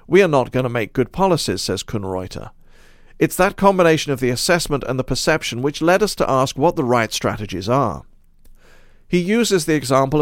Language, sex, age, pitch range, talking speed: English, male, 50-69, 120-165 Hz, 195 wpm